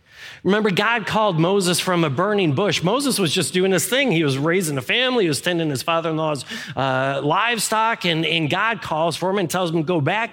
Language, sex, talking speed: English, male, 215 wpm